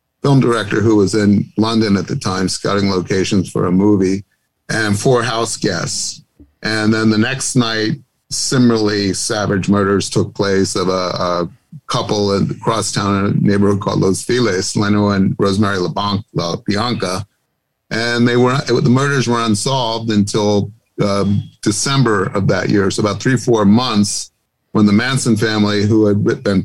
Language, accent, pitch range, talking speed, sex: English, American, 100-115 Hz, 165 wpm, male